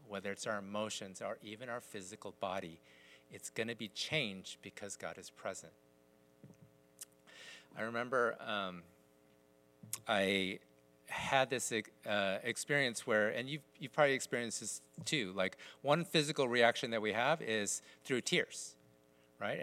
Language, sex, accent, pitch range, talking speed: English, male, American, 100-150 Hz, 140 wpm